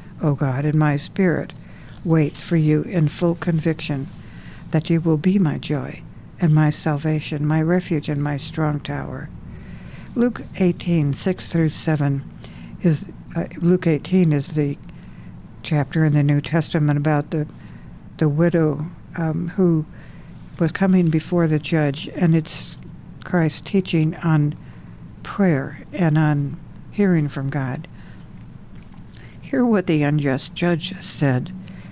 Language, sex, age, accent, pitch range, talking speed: English, female, 60-79, American, 150-175 Hz, 130 wpm